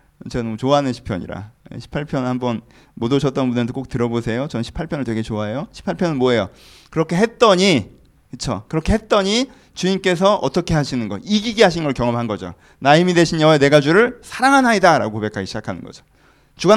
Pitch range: 135-215 Hz